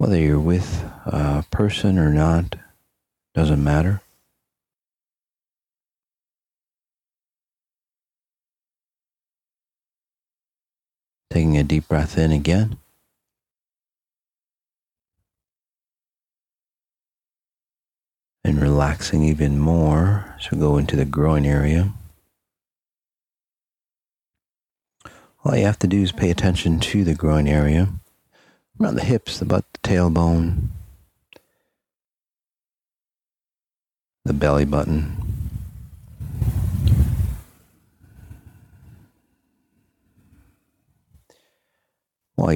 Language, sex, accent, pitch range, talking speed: English, male, American, 75-95 Hz, 70 wpm